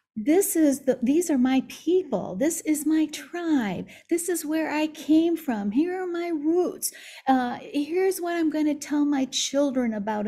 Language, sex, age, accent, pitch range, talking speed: English, female, 50-69, American, 205-275 Hz, 180 wpm